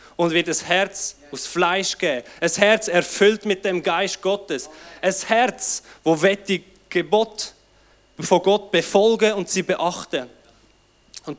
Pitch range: 175-215 Hz